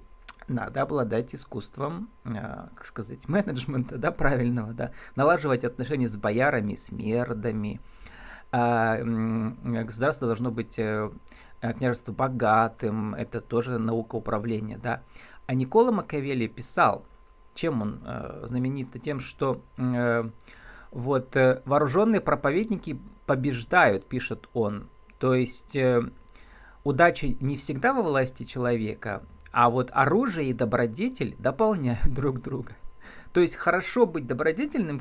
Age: 20-39